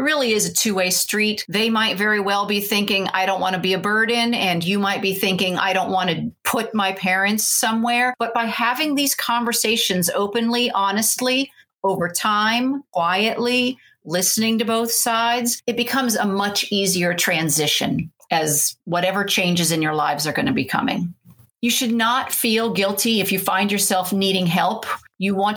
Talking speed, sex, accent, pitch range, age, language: 175 wpm, female, American, 190-235 Hz, 40-59, English